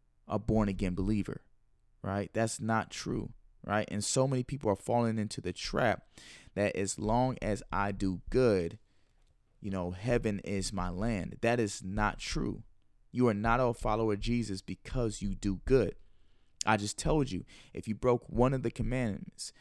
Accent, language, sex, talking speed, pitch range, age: American, English, male, 170 wpm, 100-125 Hz, 20-39